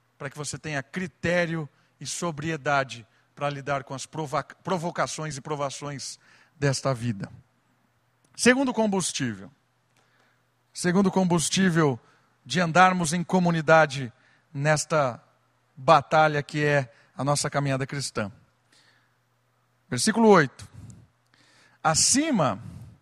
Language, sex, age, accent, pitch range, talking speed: Portuguese, male, 50-69, Brazilian, 135-215 Hz, 90 wpm